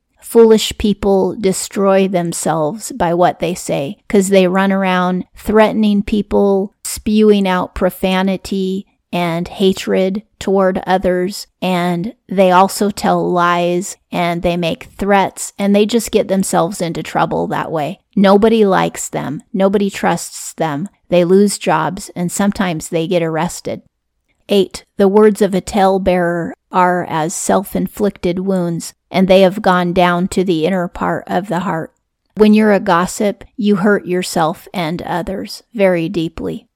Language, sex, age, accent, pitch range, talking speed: English, female, 30-49, American, 180-205 Hz, 140 wpm